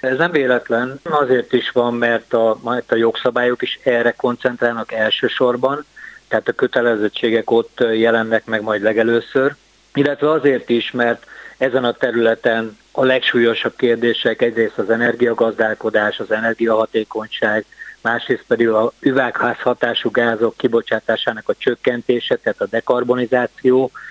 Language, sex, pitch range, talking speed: Hungarian, male, 110-125 Hz, 120 wpm